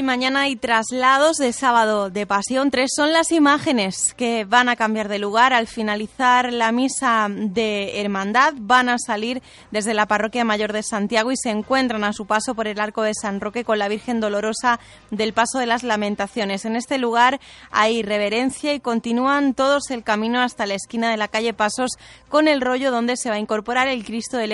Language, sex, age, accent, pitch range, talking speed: Spanish, female, 20-39, Spanish, 215-255 Hz, 200 wpm